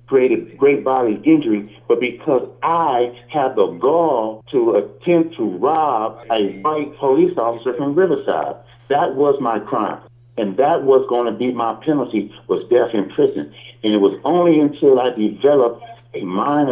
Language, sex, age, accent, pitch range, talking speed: English, male, 60-79, American, 110-165 Hz, 160 wpm